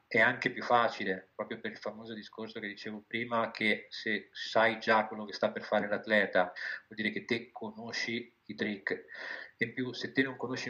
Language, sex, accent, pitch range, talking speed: Italian, male, native, 105-115 Hz, 195 wpm